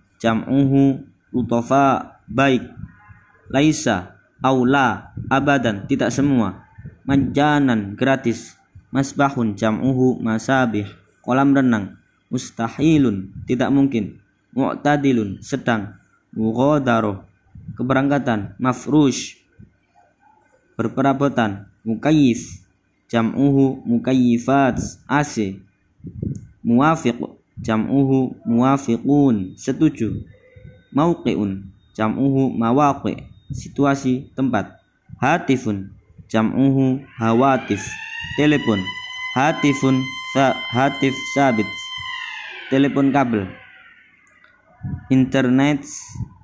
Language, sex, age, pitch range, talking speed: Arabic, male, 20-39, 110-140 Hz, 65 wpm